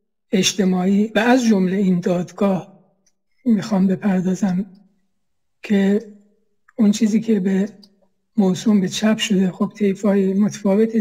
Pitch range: 195-220 Hz